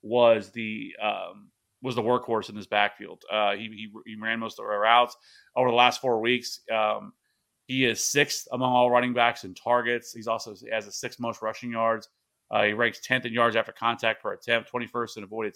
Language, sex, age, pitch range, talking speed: English, male, 30-49, 115-125 Hz, 210 wpm